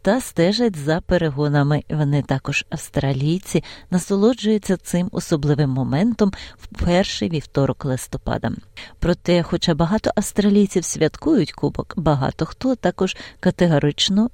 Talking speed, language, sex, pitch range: 105 wpm, Ukrainian, female, 155-185 Hz